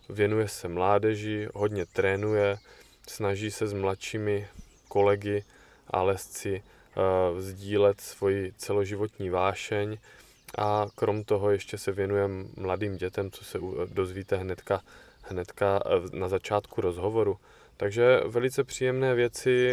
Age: 20-39